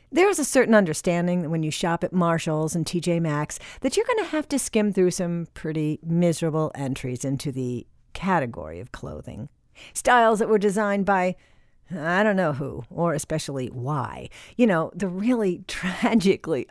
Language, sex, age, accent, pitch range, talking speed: English, female, 50-69, American, 150-225 Hz, 170 wpm